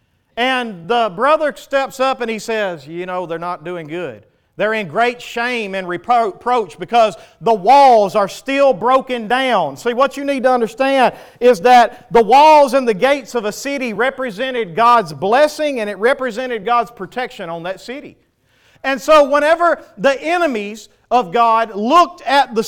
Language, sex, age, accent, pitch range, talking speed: English, male, 40-59, American, 215-280 Hz, 170 wpm